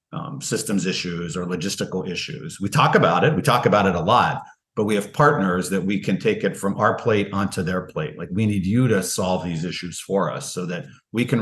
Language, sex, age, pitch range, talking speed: English, male, 50-69, 90-105 Hz, 235 wpm